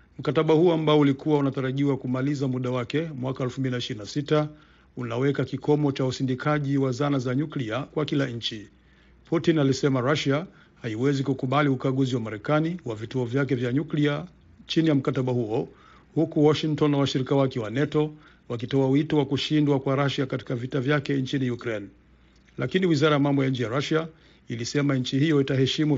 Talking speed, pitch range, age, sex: 160 wpm, 130-150 Hz, 50-69, male